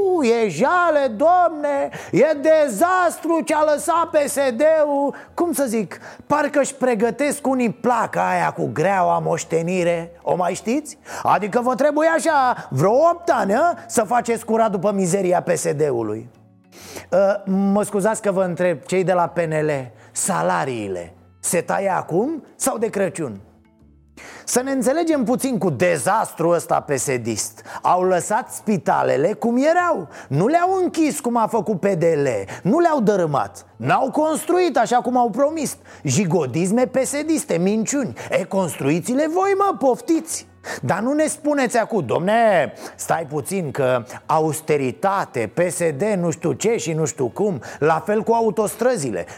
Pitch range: 175-280 Hz